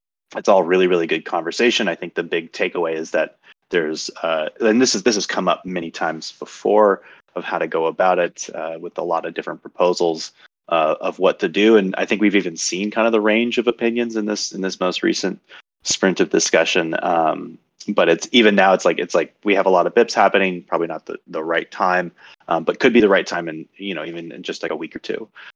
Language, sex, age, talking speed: English, male, 30-49, 245 wpm